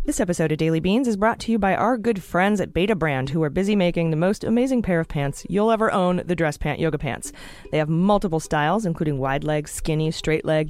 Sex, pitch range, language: female, 150-195 Hz, English